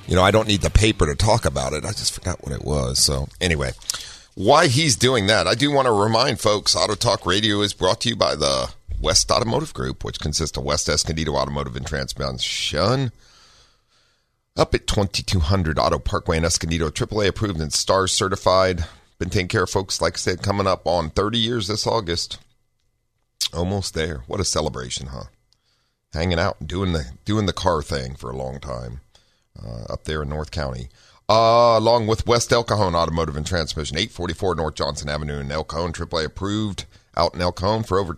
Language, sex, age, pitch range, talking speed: English, male, 40-59, 75-105 Hz, 195 wpm